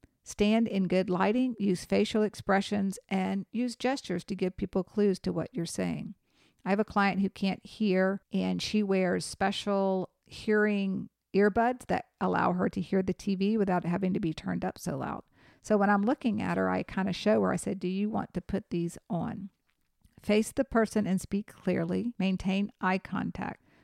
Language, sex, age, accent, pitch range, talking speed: English, female, 50-69, American, 185-215 Hz, 190 wpm